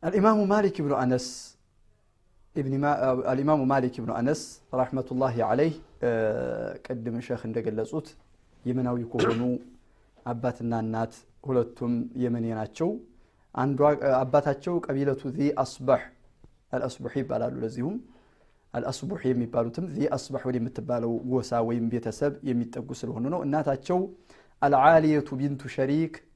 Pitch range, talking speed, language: 120-150 Hz, 105 wpm, Amharic